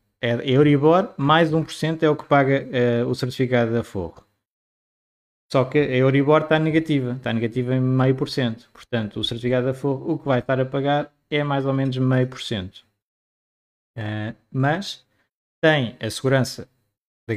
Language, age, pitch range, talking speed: Portuguese, 20-39, 110-140 Hz, 175 wpm